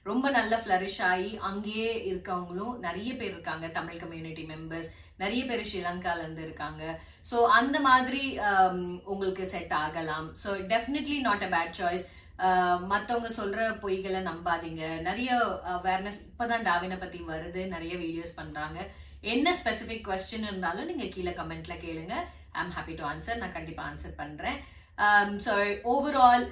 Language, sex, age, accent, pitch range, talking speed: Tamil, female, 30-49, native, 175-230 Hz, 140 wpm